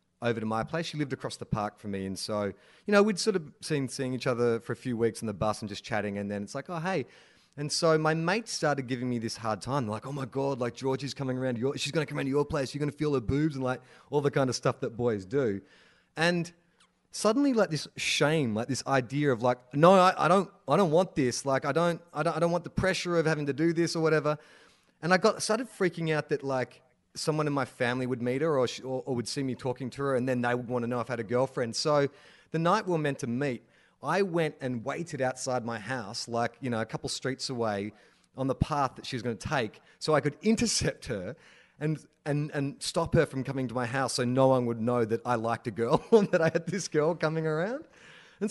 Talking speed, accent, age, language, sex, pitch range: 270 wpm, Australian, 30-49, English, male, 125-160 Hz